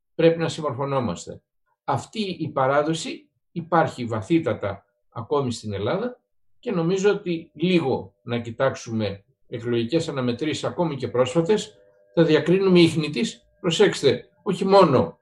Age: 60-79